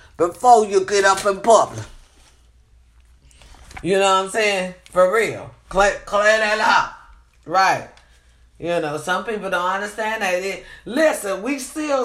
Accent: American